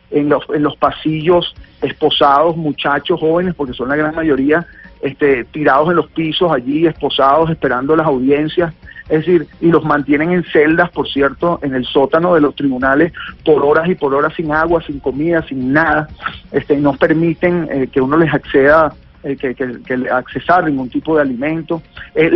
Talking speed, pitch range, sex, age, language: 180 wpm, 140-170 Hz, male, 50-69, Spanish